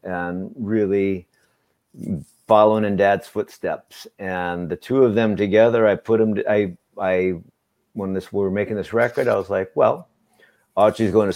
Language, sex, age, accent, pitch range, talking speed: English, male, 50-69, American, 85-110 Hz, 170 wpm